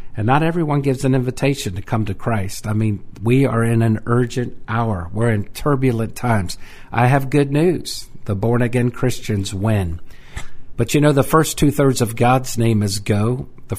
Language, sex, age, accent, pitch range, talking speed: English, male, 50-69, American, 110-130 Hz, 185 wpm